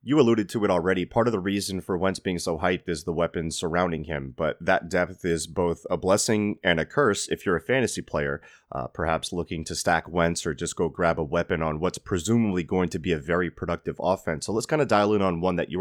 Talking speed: 250 wpm